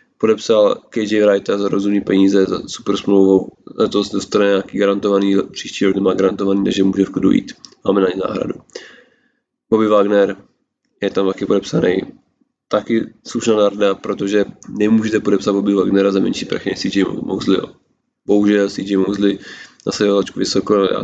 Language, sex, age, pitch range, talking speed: Czech, male, 20-39, 100-105 Hz, 150 wpm